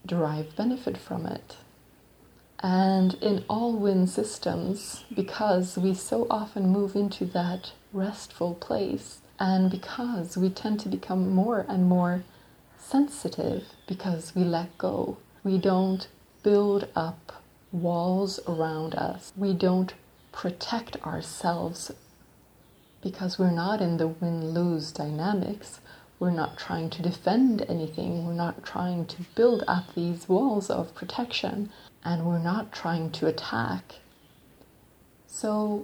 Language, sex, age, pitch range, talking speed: English, female, 30-49, 170-205 Hz, 120 wpm